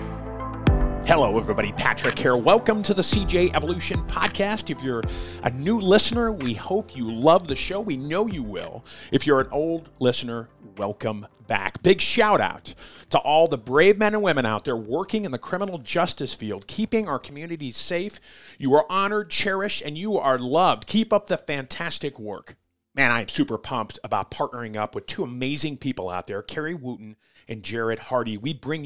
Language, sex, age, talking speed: English, male, 40-59, 180 wpm